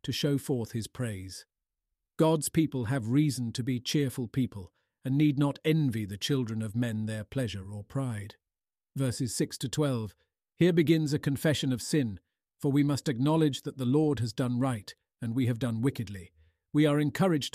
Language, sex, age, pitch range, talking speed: English, male, 50-69, 105-140 Hz, 180 wpm